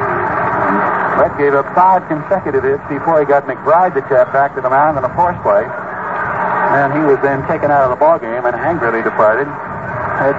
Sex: male